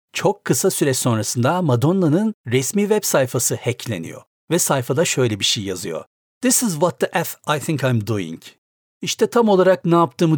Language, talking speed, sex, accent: Turkish, 170 wpm, male, native